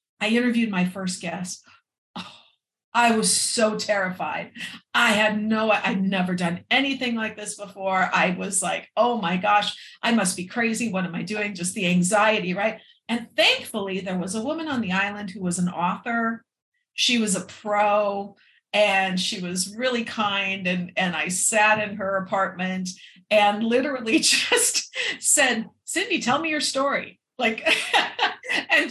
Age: 50-69